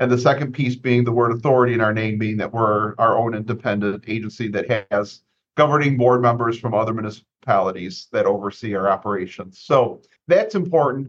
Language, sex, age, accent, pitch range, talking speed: English, male, 40-59, American, 110-130 Hz, 180 wpm